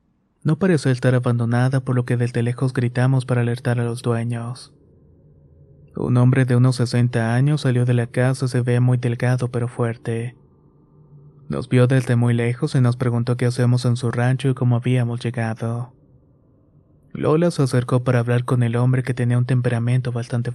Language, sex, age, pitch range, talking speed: Spanish, male, 30-49, 120-130 Hz, 180 wpm